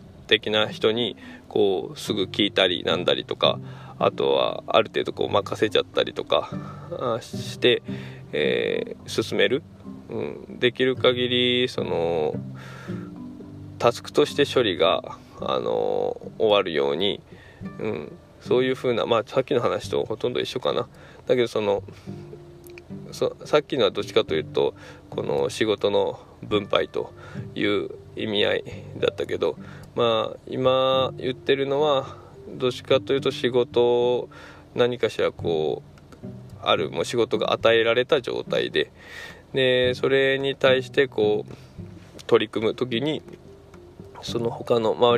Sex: male